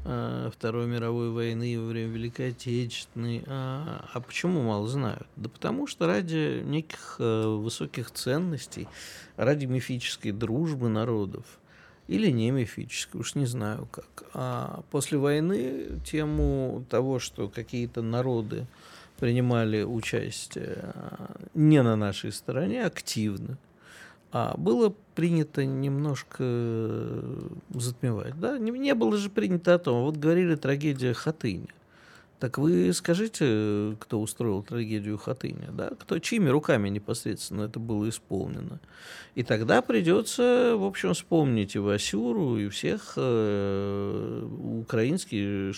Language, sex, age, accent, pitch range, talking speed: Russian, male, 50-69, native, 110-155 Hz, 115 wpm